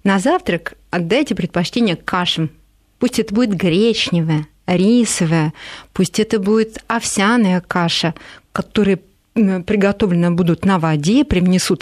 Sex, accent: female, native